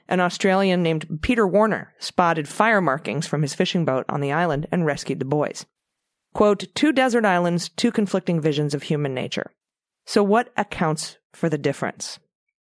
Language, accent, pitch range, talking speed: English, American, 165-210 Hz, 165 wpm